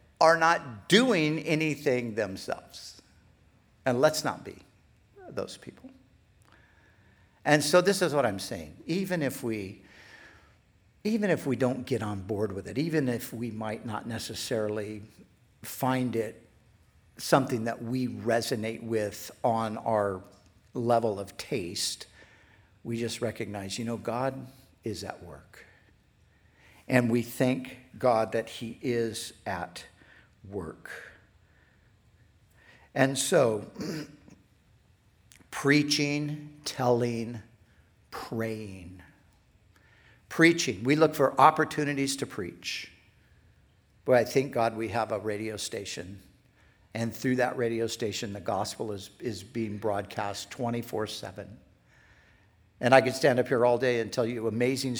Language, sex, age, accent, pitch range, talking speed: English, male, 60-79, American, 105-130 Hz, 125 wpm